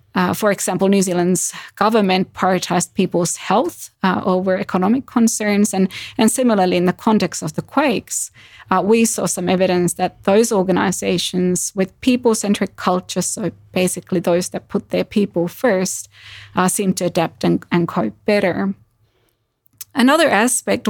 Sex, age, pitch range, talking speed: female, 20-39, 175-205 Hz, 145 wpm